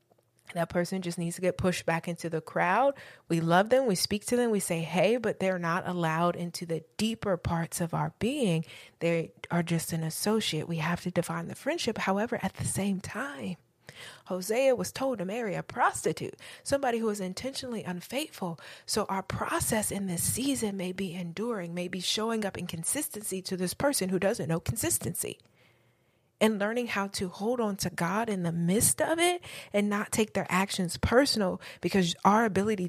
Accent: American